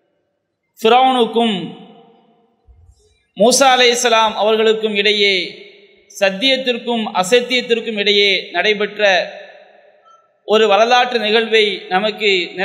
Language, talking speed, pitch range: English, 105 wpm, 215-265 Hz